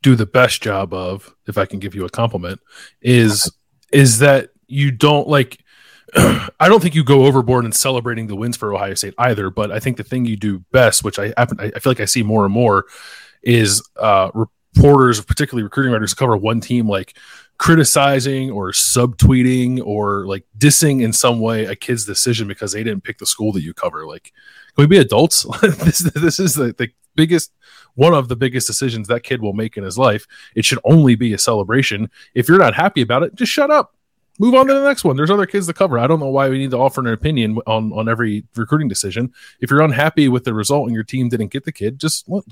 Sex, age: male, 20-39